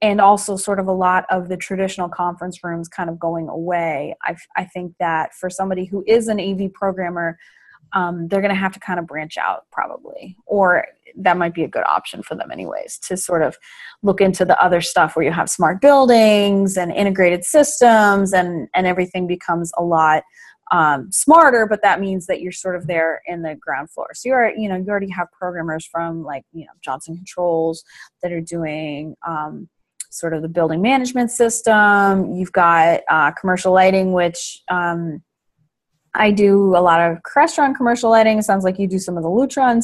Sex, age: female, 20-39